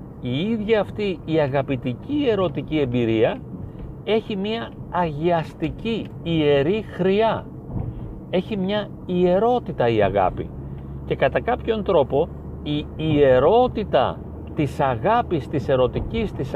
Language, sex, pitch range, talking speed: Greek, male, 125-175 Hz, 100 wpm